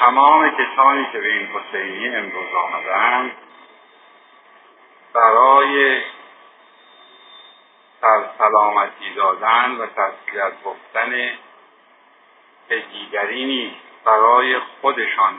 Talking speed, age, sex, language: 70 wpm, 50-69, male, Persian